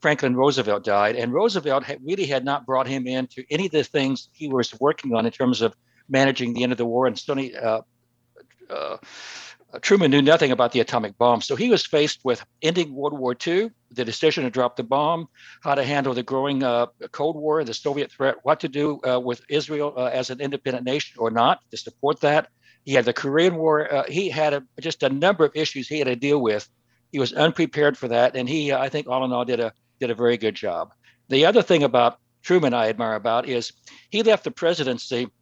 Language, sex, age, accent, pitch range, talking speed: English, male, 60-79, American, 120-150 Hz, 220 wpm